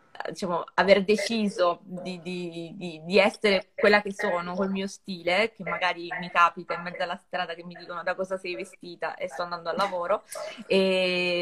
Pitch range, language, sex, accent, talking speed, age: 175-210 Hz, Italian, female, native, 185 wpm, 20-39